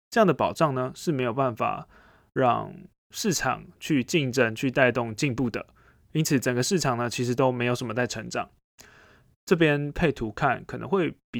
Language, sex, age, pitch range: Chinese, male, 20-39, 110-140 Hz